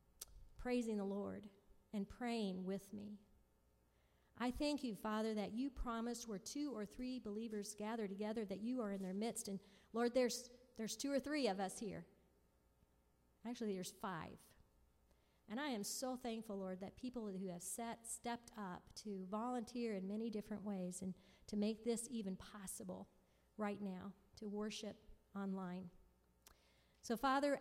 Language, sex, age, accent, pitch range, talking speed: English, female, 40-59, American, 195-245 Hz, 155 wpm